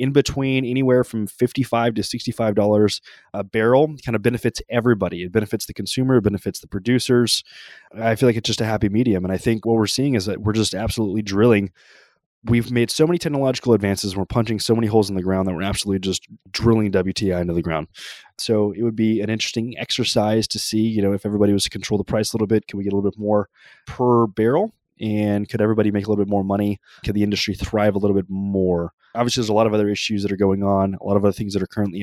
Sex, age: male, 20-39